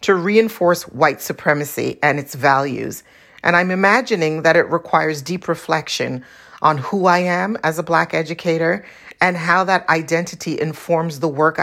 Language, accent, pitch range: English, American, 150-190 Hz